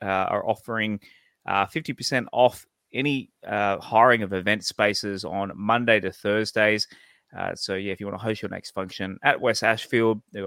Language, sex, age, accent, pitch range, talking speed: English, male, 20-39, Australian, 95-115 Hz, 180 wpm